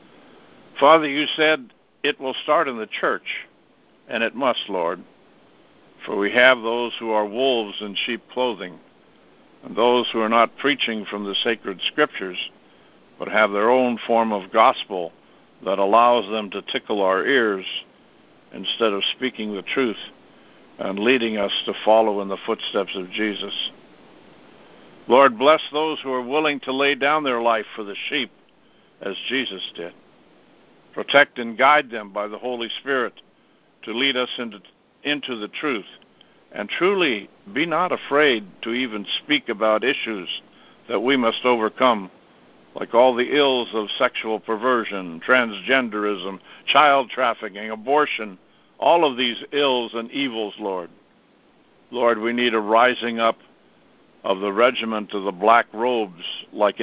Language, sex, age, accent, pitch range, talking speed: English, male, 60-79, American, 105-125 Hz, 150 wpm